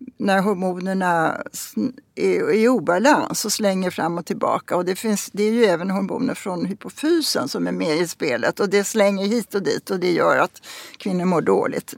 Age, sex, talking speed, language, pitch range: 60-79, female, 190 wpm, Swedish, 200-260 Hz